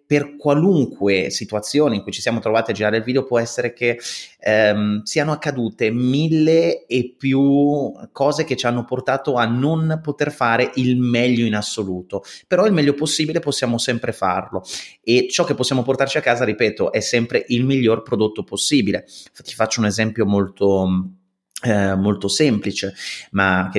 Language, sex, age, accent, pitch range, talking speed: Italian, male, 30-49, native, 100-130 Hz, 165 wpm